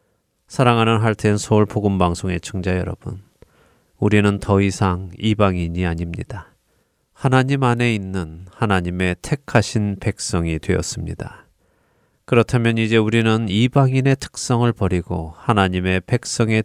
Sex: male